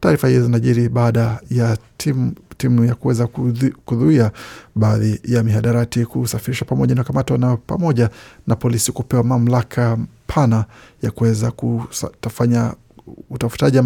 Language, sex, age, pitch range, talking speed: Swahili, male, 50-69, 115-130 Hz, 120 wpm